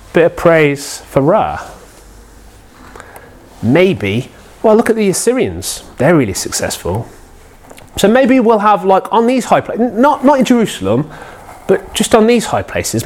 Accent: British